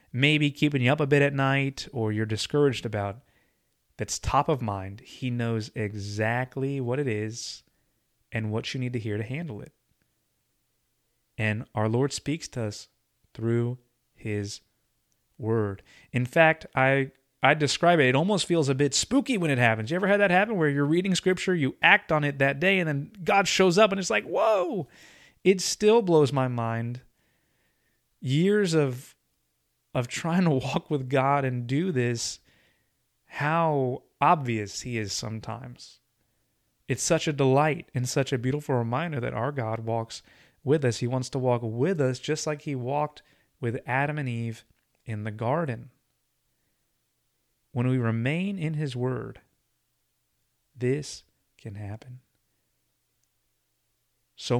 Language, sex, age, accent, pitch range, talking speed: English, male, 30-49, American, 115-150 Hz, 155 wpm